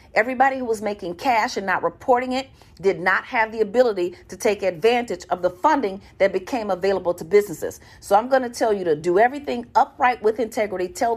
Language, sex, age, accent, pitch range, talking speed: English, female, 40-59, American, 185-235 Hz, 205 wpm